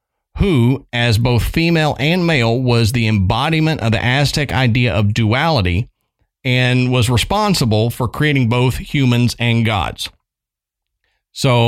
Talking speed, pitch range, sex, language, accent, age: 130 wpm, 105-125 Hz, male, English, American, 40-59